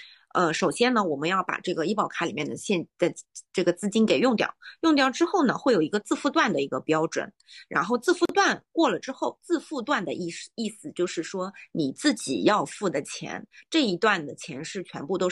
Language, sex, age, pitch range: Chinese, female, 30-49, 170-265 Hz